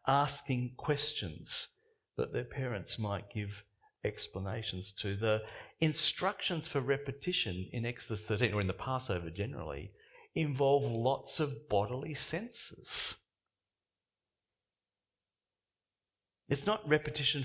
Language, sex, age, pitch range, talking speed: English, male, 50-69, 95-140 Hz, 100 wpm